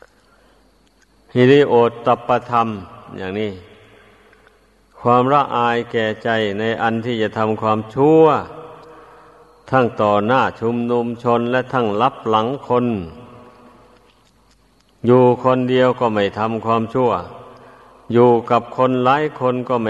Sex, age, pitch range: male, 50-69, 110-130 Hz